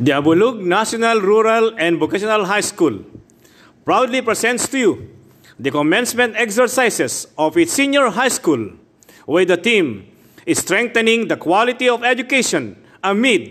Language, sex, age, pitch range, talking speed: English, male, 50-69, 190-275 Hz, 130 wpm